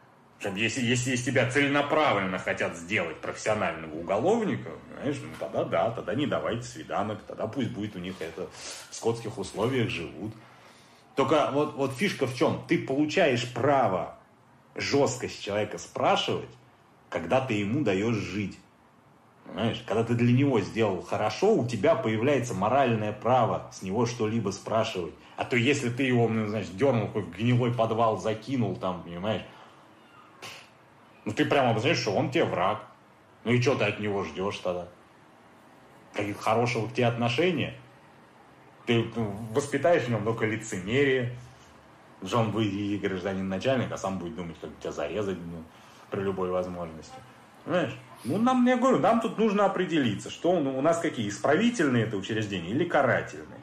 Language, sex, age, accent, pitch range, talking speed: Russian, male, 30-49, native, 105-135 Hz, 150 wpm